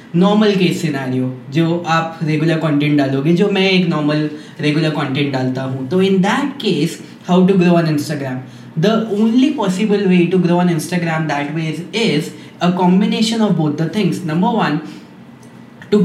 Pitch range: 160-195 Hz